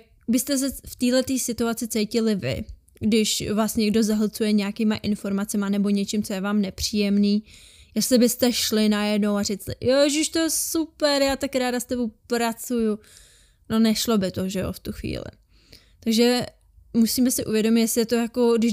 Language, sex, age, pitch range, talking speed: Czech, female, 20-39, 205-230 Hz, 170 wpm